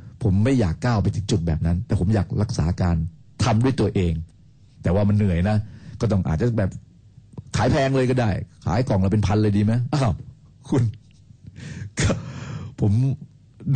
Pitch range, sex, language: 100-130 Hz, male, Thai